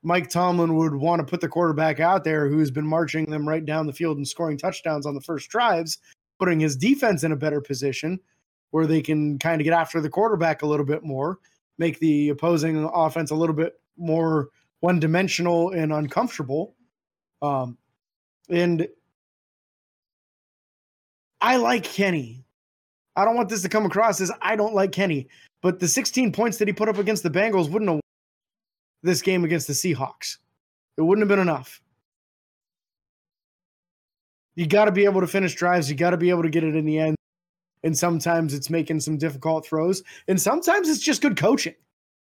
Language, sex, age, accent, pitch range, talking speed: English, male, 20-39, American, 155-195 Hz, 185 wpm